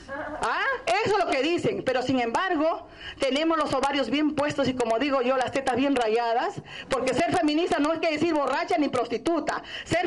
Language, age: Spanish, 40-59